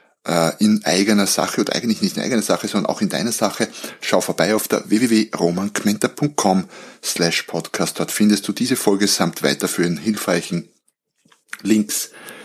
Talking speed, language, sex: 145 wpm, German, male